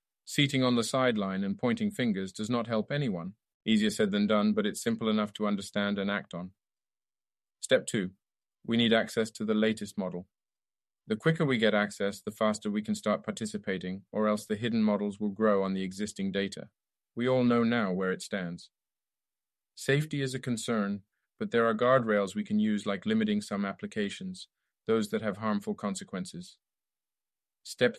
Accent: British